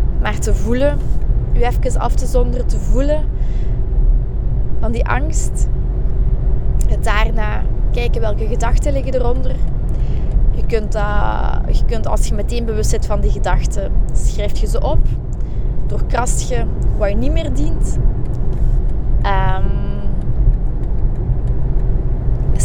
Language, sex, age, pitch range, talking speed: Dutch, female, 20-39, 110-125 Hz, 115 wpm